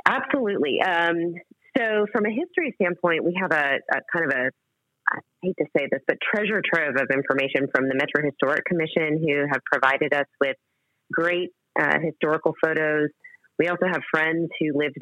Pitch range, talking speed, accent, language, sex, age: 140-180 Hz, 175 wpm, American, English, female, 30-49